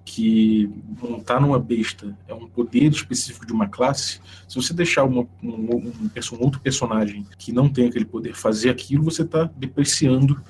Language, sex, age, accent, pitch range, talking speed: Portuguese, male, 20-39, Brazilian, 115-145 Hz, 185 wpm